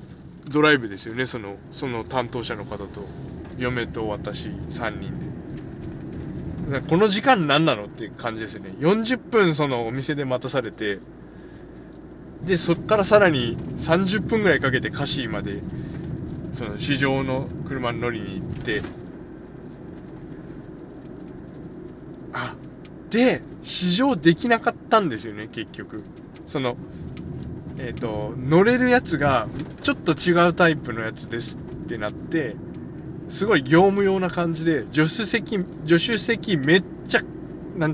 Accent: native